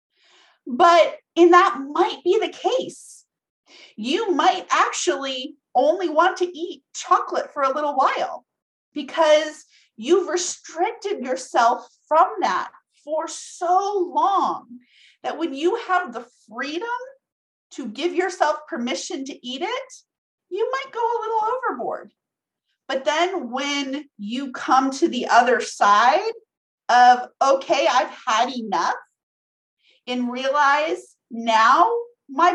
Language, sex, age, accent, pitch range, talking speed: English, female, 40-59, American, 265-375 Hz, 120 wpm